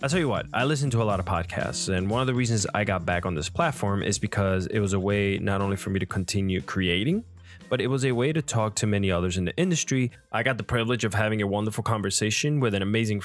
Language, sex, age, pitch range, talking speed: English, male, 20-39, 100-135 Hz, 270 wpm